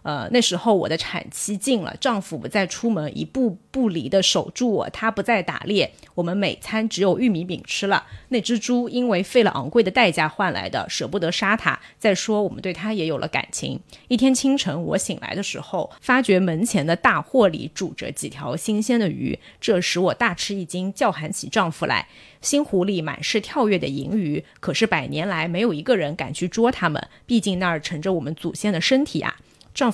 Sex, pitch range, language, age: female, 175-230 Hz, Chinese, 30-49